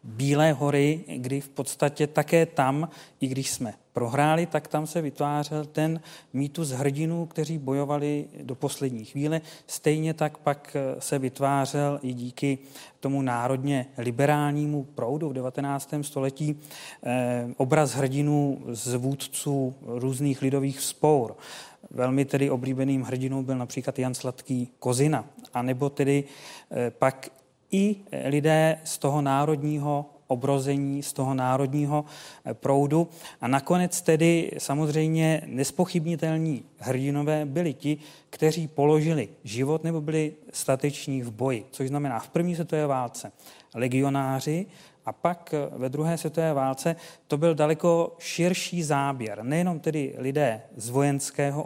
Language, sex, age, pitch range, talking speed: Czech, male, 40-59, 135-155 Hz, 125 wpm